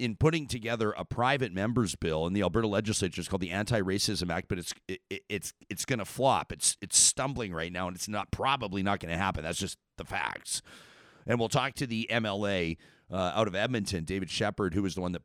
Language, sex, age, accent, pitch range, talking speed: English, male, 40-59, American, 100-140 Hz, 230 wpm